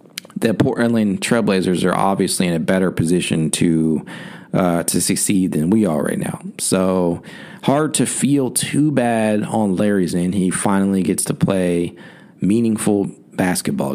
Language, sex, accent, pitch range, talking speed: English, male, American, 95-115 Hz, 145 wpm